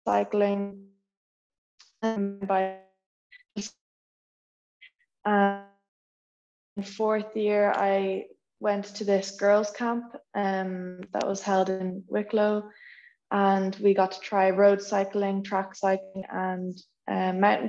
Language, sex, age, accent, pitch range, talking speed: English, female, 20-39, Irish, 190-205 Hz, 100 wpm